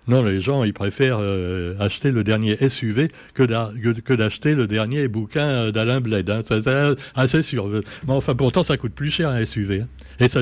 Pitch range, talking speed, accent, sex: 110-150 Hz, 215 wpm, French, male